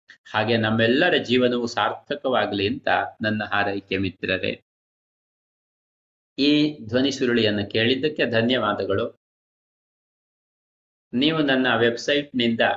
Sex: male